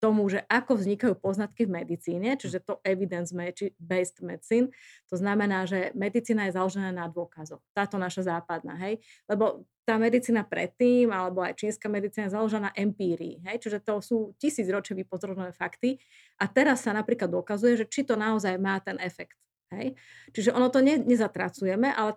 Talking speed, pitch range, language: 165 wpm, 185-225 Hz, Slovak